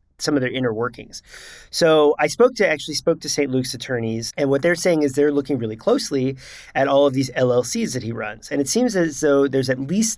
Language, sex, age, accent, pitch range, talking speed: English, male, 40-59, American, 130-170 Hz, 235 wpm